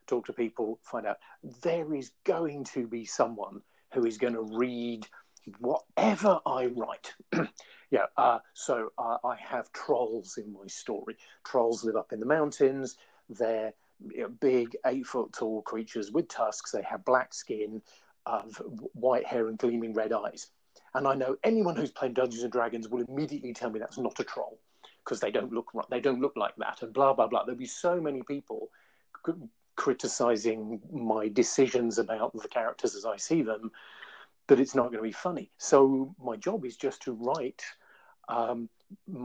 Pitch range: 115-135 Hz